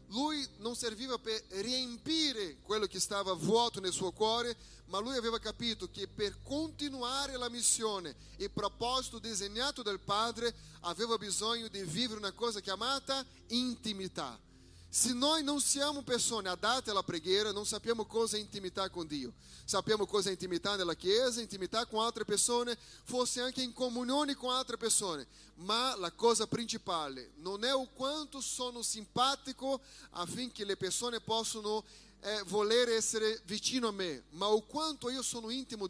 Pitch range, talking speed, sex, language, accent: 195-240 Hz, 155 wpm, male, Italian, Brazilian